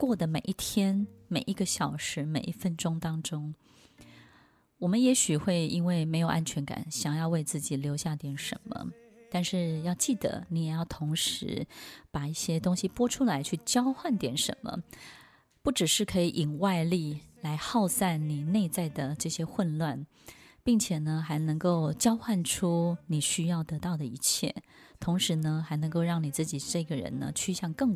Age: 20-39